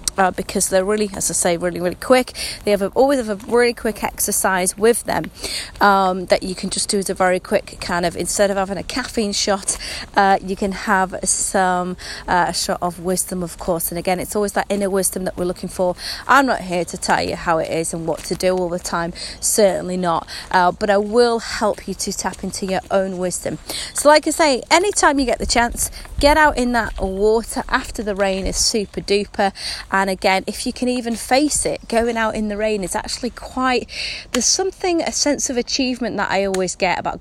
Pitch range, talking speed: 185-235 Hz, 225 wpm